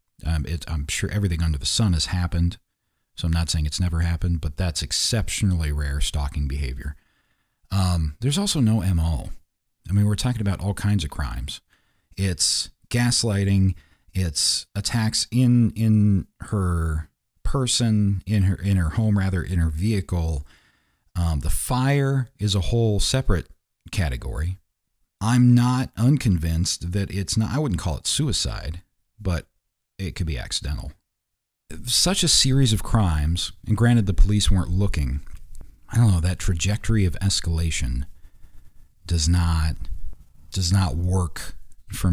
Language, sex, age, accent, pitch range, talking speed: English, male, 40-59, American, 80-105 Hz, 145 wpm